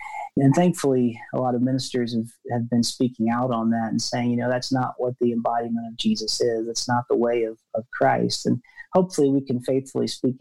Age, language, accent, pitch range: 40-59, English, American, 120-145 Hz